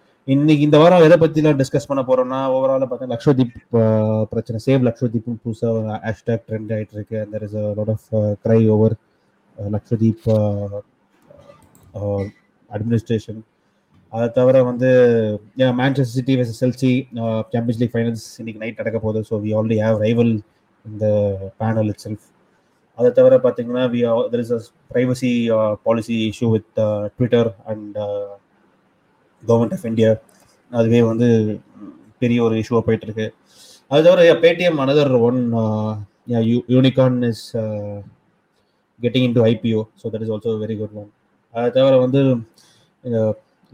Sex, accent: male, native